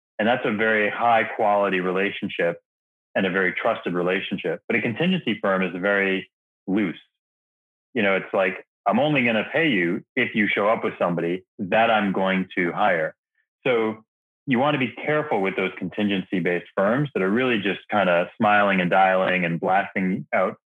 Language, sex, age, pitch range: English, male, 30-49, 90-115 Hz